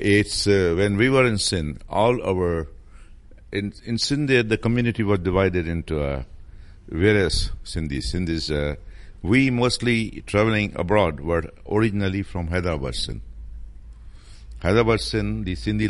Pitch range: 80-100 Hz